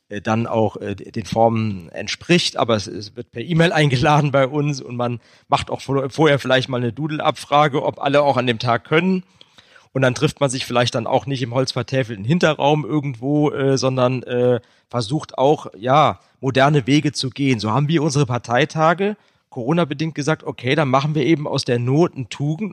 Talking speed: 180 wpm